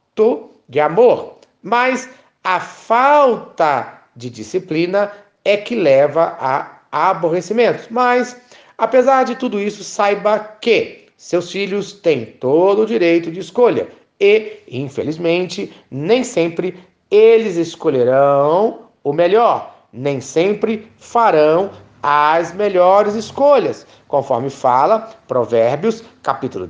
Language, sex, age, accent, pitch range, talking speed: Portuguese, male, 40-59, Brazilian, 150-235 Hz, 100 wpm